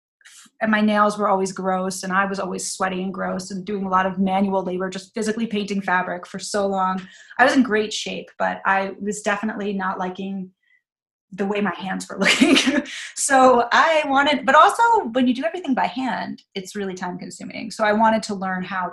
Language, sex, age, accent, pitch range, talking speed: English, female, 30-49, American, 190-220 Hz, 205 wpm